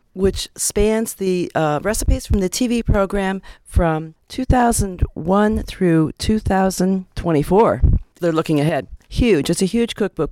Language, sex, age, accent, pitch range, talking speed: English, female, 50-69, American, 160-205 Hz, 120 wpm